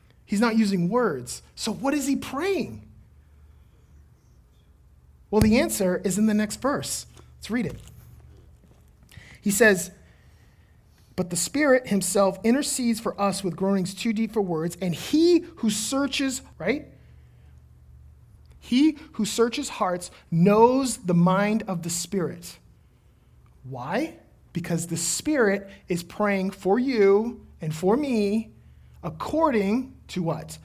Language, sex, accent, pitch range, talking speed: English, male, American, 170-245 Hz, 125 wpm